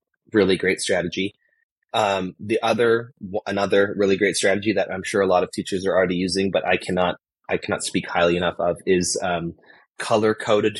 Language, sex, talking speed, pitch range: English, male, 180 wpm, 90-115 Hz